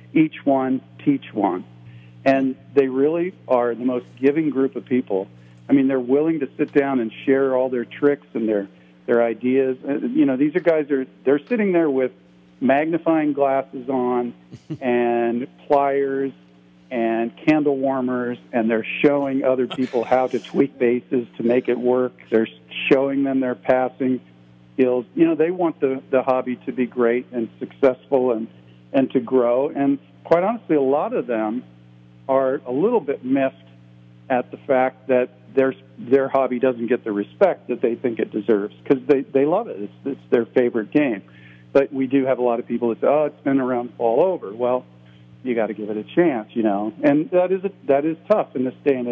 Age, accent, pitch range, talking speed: 50-69, American, 115-140 Hz, 195 wpm